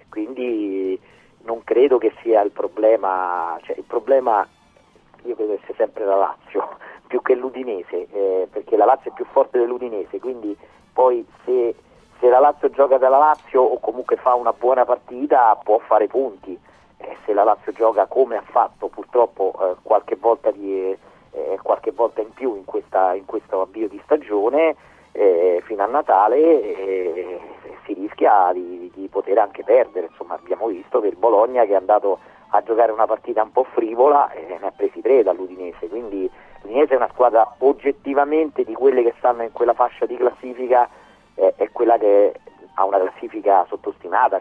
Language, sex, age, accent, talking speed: Italian, male, 40-59, native, 175 wpm